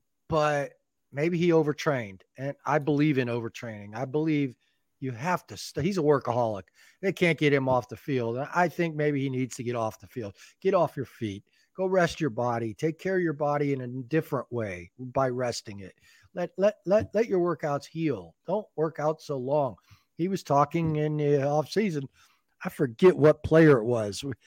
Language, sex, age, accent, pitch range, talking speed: English, male, 40-59, American, 125-165 Hz, 200 wpm